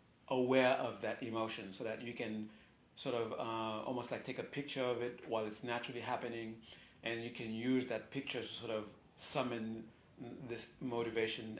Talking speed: 175 wpm